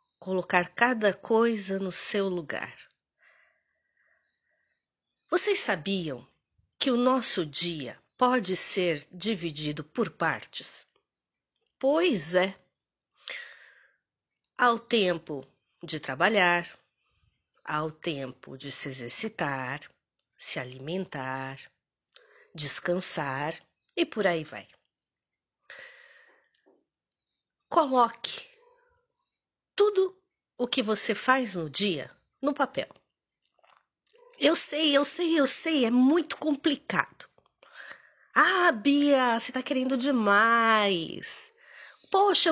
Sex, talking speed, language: female, 90 wpm, Portuguese